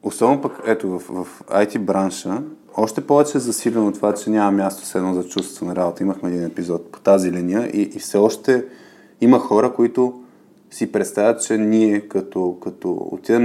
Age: 20-39